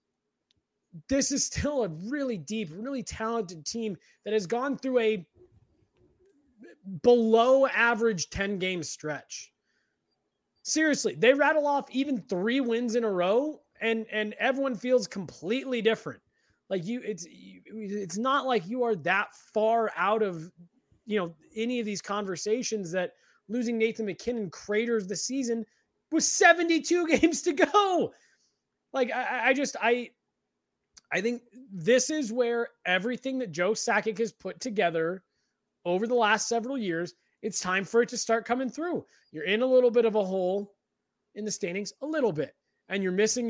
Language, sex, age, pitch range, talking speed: English, male, 20-39, 190-245 Hz, 155 wpm